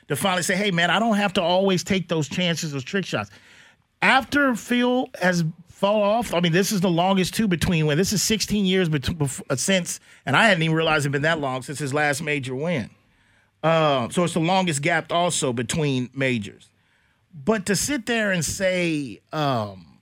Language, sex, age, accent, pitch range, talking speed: English, male, 40-59, American, 145-195 Hz, 205 wpm